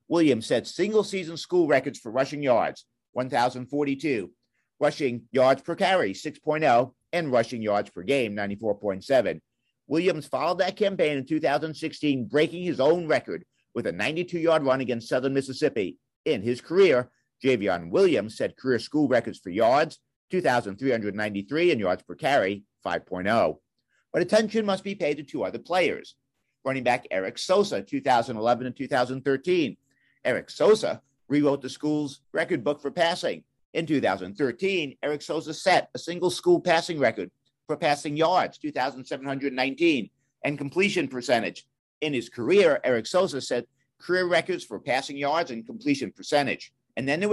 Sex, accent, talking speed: male, American, 145 wpm